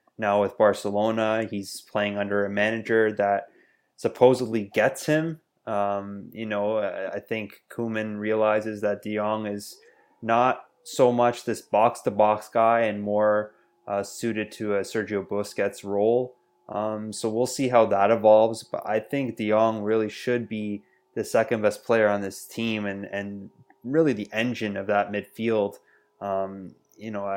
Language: English